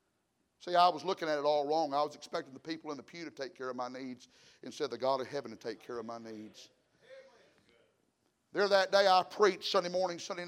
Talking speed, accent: 240 wpm, American